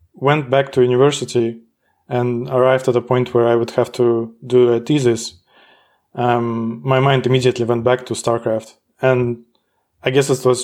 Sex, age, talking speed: male, 20-39, 170 wpm